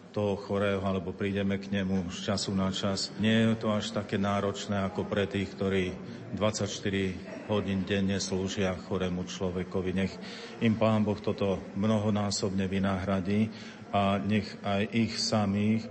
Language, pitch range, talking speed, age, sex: Slovak, 95-110 Hz, 145 wpm, 40-59, male